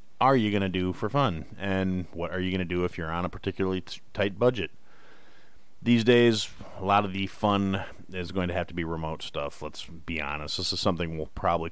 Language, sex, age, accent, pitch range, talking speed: English, male, 30-49, American, 80-95 Hz, 225 wpm